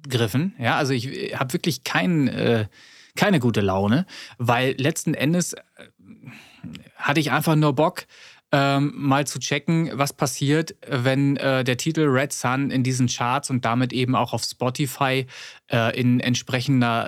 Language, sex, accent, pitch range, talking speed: German, male, German, 120-145 Hz, 135 wpm